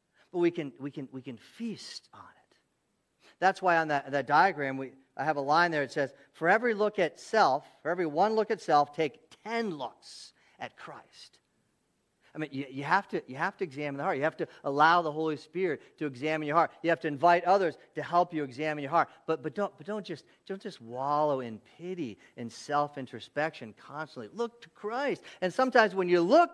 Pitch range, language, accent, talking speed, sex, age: 125-180 Hz, English, American, 215 wpm, male, 40-59